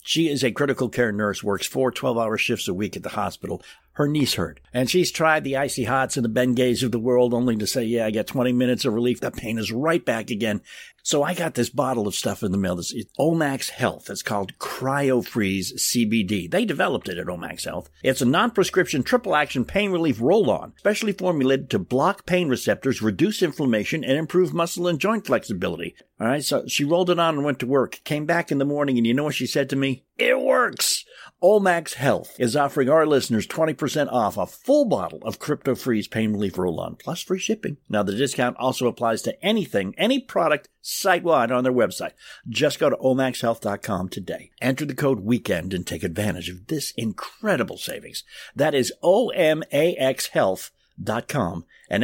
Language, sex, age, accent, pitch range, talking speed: English, male, 60-79, American, 120-170 Hz, 195 wpm